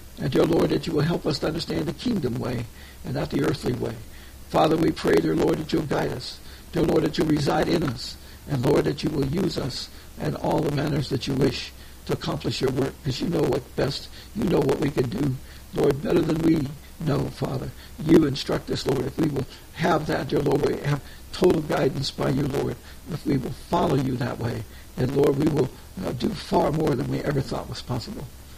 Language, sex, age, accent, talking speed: English, male, 60-79, American, 225 wpm